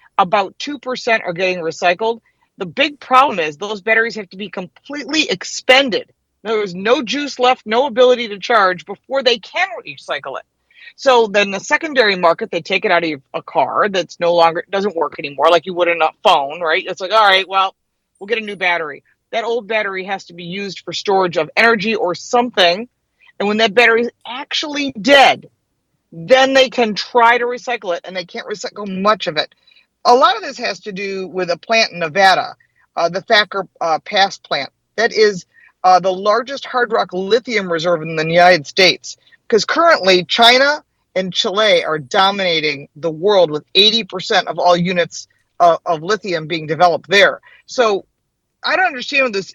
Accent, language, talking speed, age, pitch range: American, English, 190 wpm, 40-59, 180-245 Hz